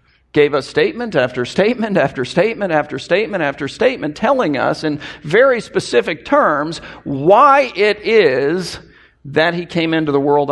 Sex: male